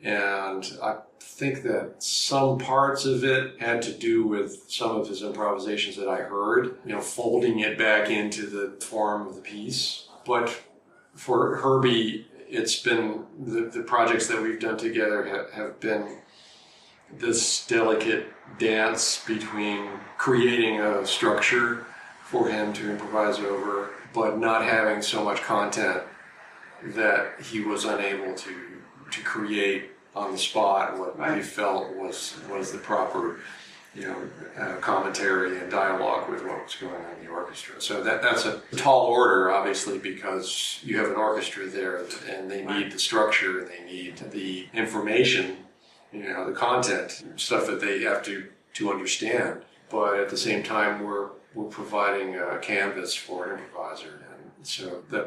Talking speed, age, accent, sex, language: 155 wpm, 50-69, American, male, English